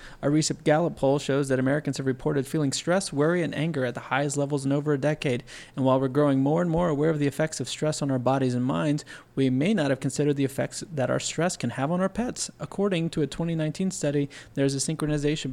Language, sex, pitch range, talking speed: English, male, 135-170 Hz, 245 wpm